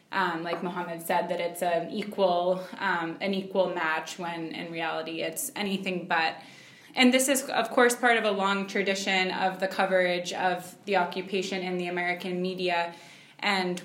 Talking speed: 170 wpm